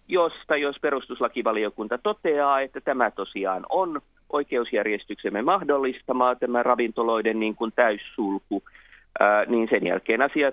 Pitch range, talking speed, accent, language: 125-155 Hz, 115 wpm, native, Finnish